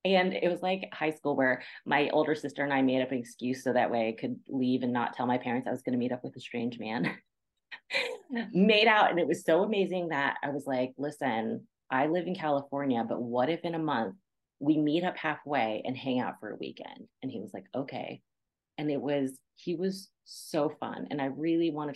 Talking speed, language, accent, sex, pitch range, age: 235 wpm, English, American, female, 135-210 Hz, 30-49